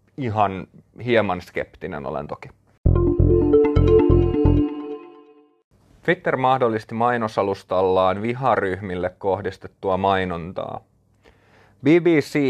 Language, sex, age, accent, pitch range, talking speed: Finnish, male, 30-49, native, 95-115 Hz, 60 wpm